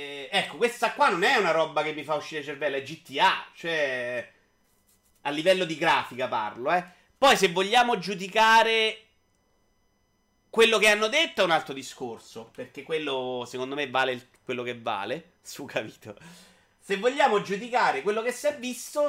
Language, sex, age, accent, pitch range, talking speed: Italian, male, 30-49, native, 125-210 Hz, 165 wpm